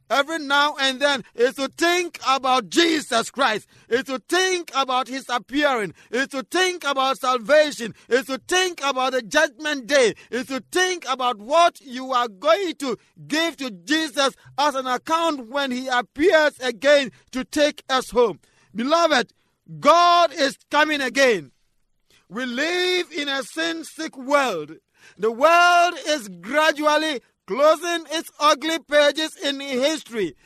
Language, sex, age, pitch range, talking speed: English, male, 50-69, 255-325 Hz, 140 wpm